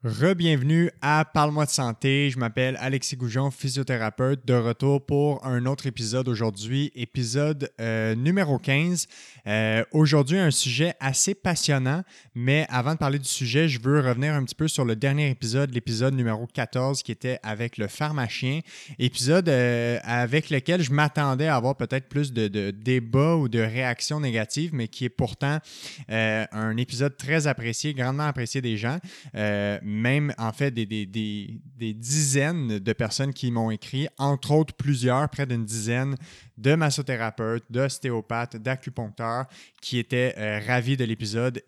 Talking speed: 160 wpm